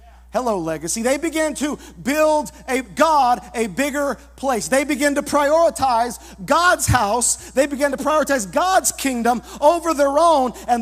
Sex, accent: male, American